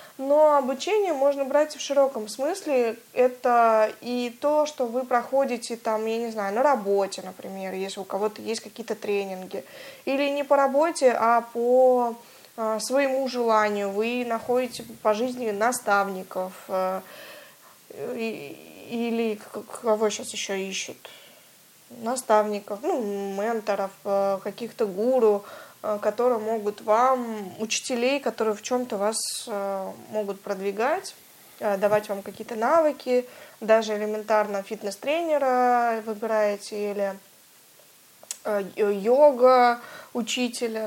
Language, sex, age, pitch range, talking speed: Russian, female, 20-39, 210-260 Hz, 105 wpm